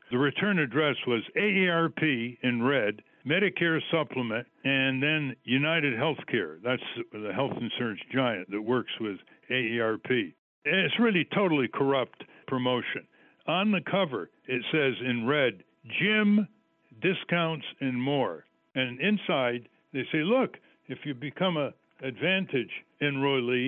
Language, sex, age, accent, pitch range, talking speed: English, male, 60-79, American, 130-180 Hz, 125 wpm